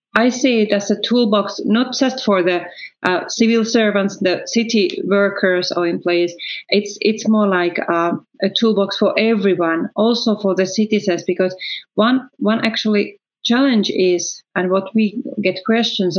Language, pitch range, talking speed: English, 180-225 Hz, 155 wpm